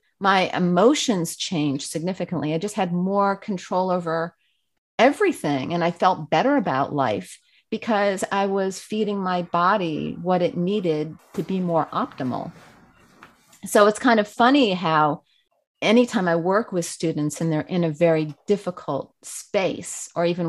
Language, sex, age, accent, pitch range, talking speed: English, female, 40-59, American, 165-210 Hz, 145 wpm